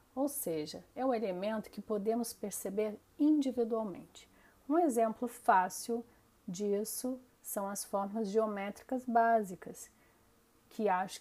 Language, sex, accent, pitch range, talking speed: Portuguese, female, Brazilian, 190-230 Hz, 105 wpm